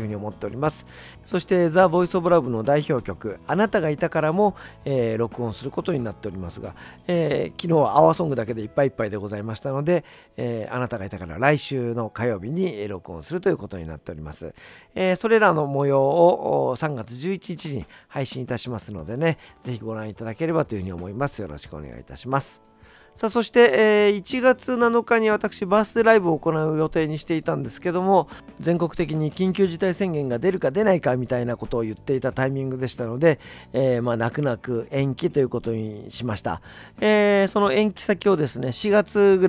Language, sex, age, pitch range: Japanese, male, 50-69, 110-170 Hz